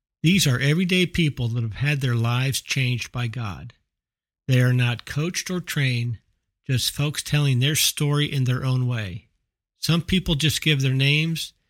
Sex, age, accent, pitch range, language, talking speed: male, 50-69, American, 115-140 Hz, English, 170 wpm